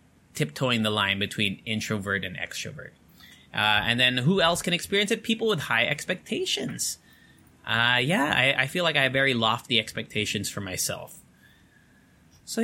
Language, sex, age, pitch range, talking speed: English, male, 20-39, 120-170 Hz, 155 wpm